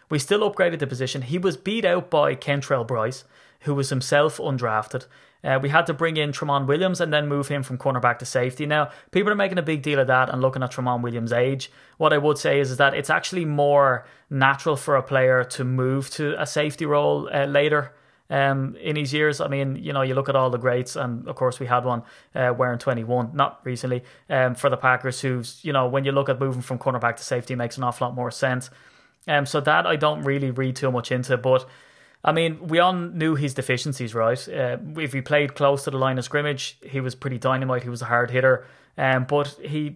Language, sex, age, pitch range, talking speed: English, male, 20-39, 130-150 Hz, 235 wpm